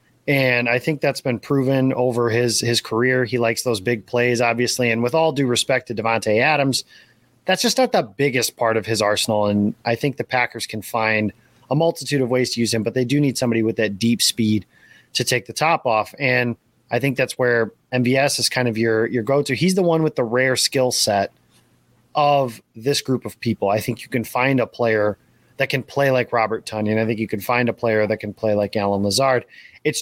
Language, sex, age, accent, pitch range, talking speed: English, male, 30-49, American, 115-140 Hz, 230 wpm